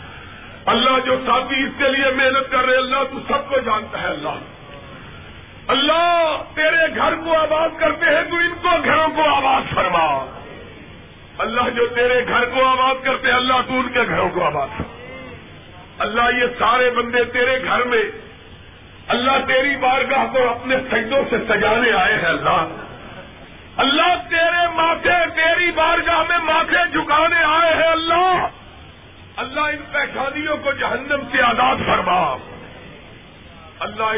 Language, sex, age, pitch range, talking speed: Urdu, male, 50-69, 250-305 Hz, 145 wpm